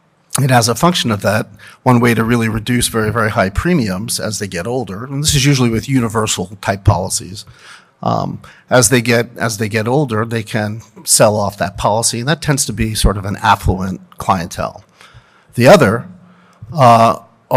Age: 50-69